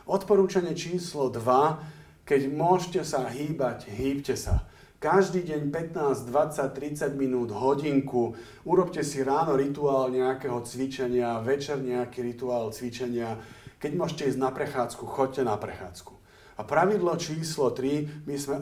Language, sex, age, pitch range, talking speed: Slovak, male, 40-59, 125-155 Hz, 130 wpm